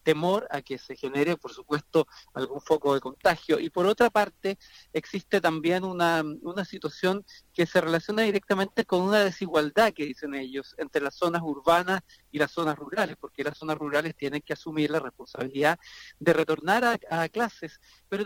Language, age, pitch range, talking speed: Spanish, 40-59, 145-185 Hz, 175 wpm